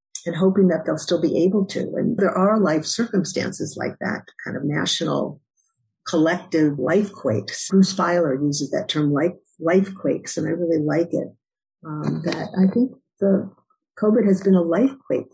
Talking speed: 165 wpm